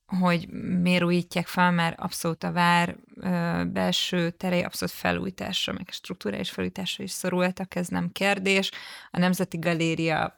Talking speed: 140 wpm